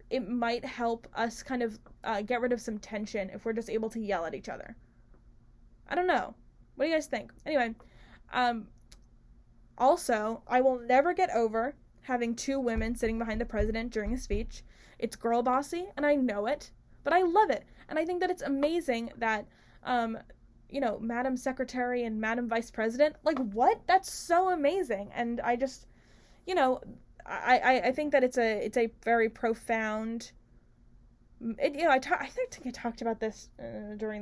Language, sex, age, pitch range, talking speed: English, female, 10-29, 220-270 Hz, 190 wpm